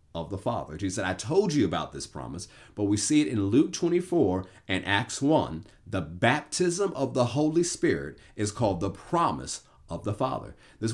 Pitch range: 100-130 Hz